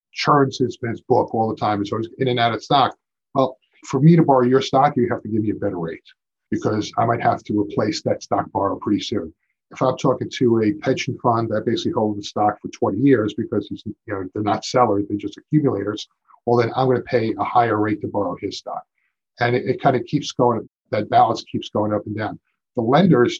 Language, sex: English, male